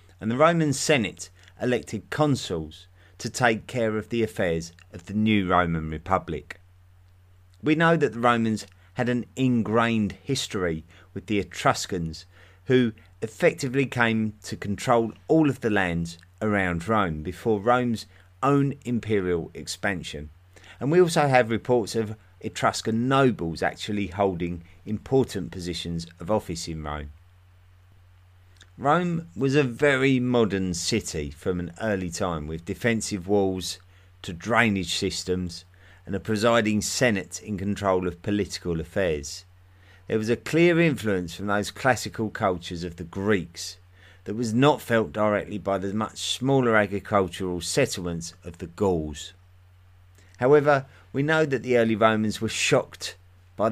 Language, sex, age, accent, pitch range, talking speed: English, male, 30-49, British, 90-115 Hz, 135 wpm